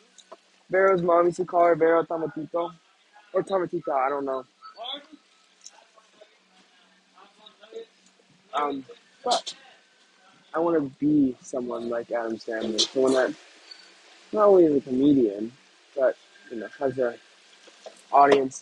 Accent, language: American, English